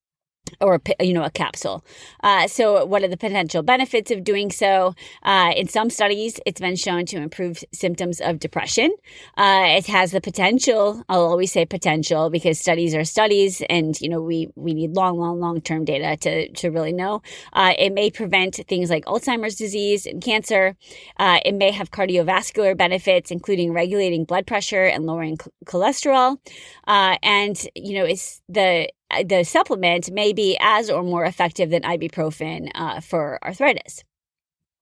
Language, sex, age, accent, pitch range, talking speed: English, female, 30-49, American, 170-210 Hz, 165 wpm